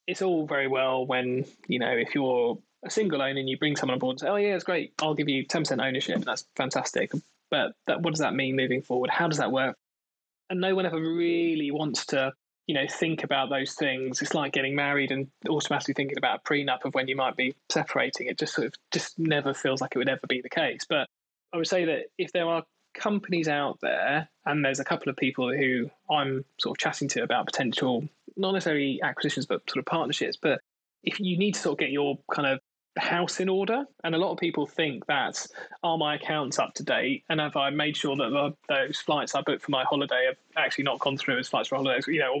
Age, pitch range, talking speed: 20-39, 135-175 Hz, 245 wpm